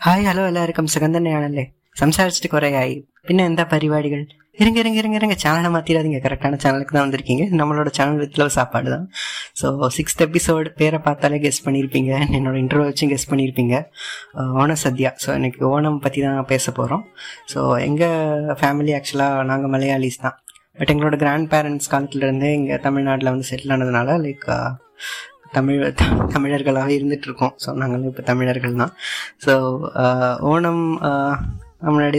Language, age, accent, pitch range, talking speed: Tamil, 20-39, native, 130-155 Hz, 140 wpm